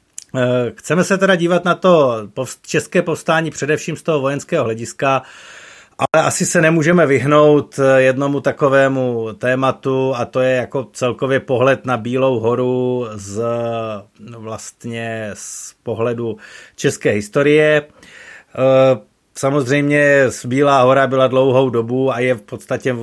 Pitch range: 120-145 Hz